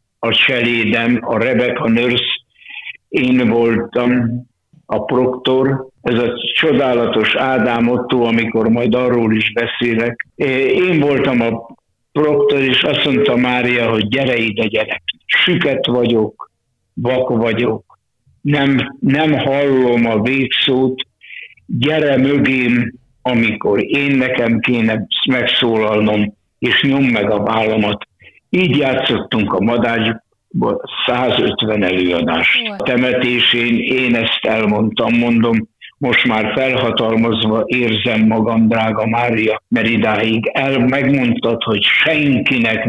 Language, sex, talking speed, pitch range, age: Hungarian, male, 105 wpm, 110-125 Hz, 60-79